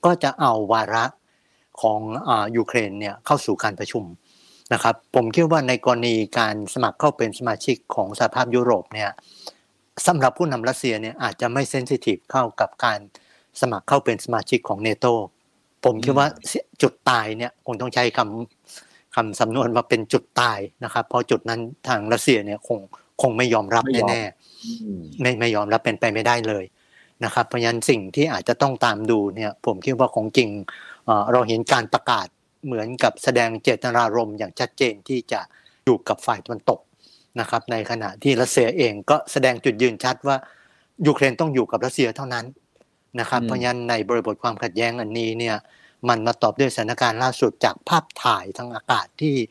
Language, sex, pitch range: Thai, male, 115-130 Hz